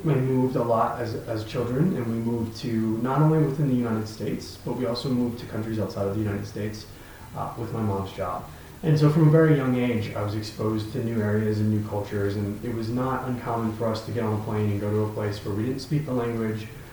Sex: male